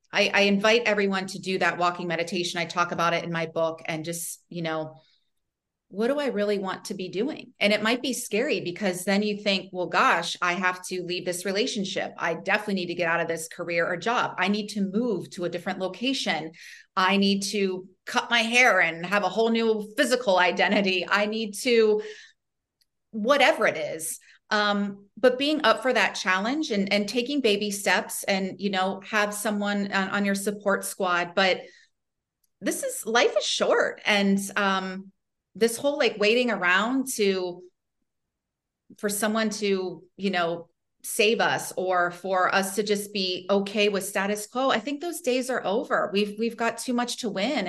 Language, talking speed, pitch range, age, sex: English, 185 wpm, 185-225 Hz, 30-49, female